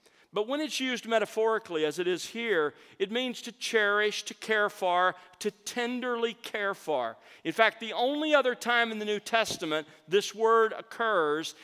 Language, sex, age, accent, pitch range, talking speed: English, male, 50-69, American, 160-215 Hz, 170 wpm